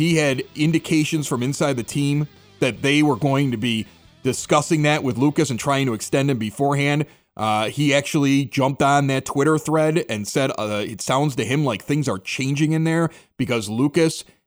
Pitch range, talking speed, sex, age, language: 135-180 Hz, 190 wpm, male, 30-49, English